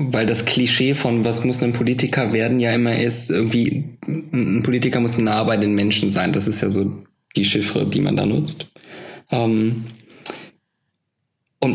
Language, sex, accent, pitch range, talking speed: German, male, German, 110-130 Hz, 160 wpm